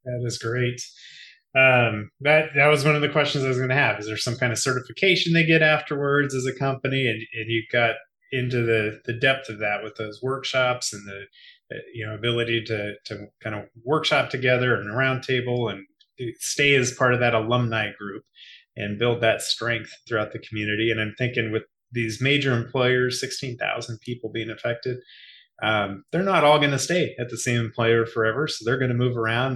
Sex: male